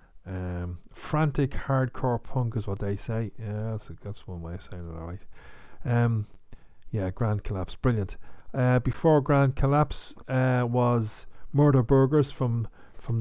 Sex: male